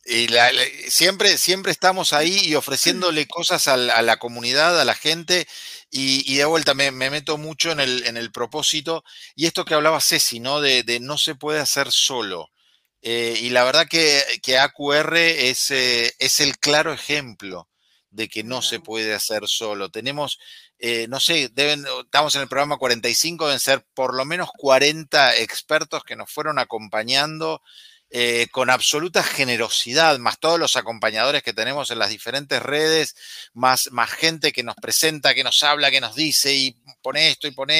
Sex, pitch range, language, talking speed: male, 120-155 Hz, Spanish, 185 wpm